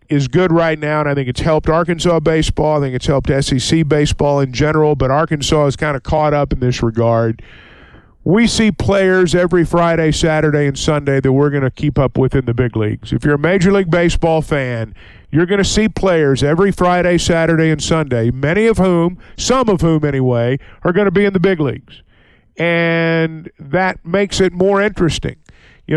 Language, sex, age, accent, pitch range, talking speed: English, male, 50-69, American, 145-185 Hz, 200 wpm